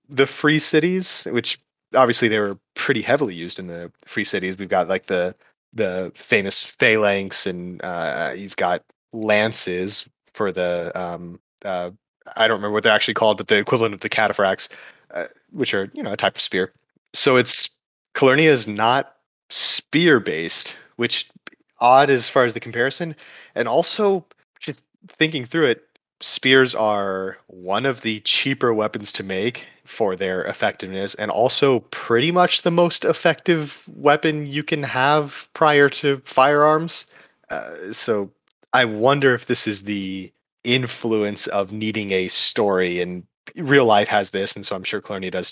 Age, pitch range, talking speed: 30-49, 100-135 Hz, 160 wpm